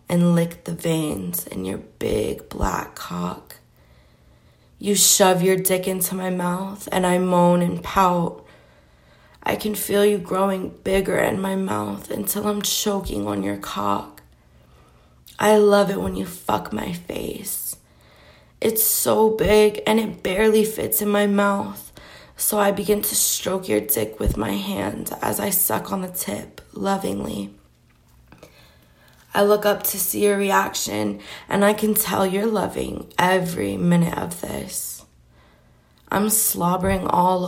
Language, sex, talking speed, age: English, female, 145 wpm, 20-39